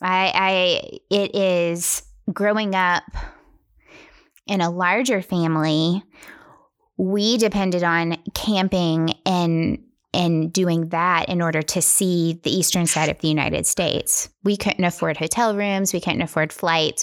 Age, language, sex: 20-39, English, female